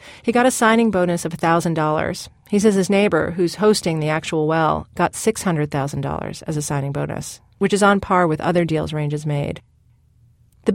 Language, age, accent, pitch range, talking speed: English, 40-59, American, 150-190 Hz, 185 wpm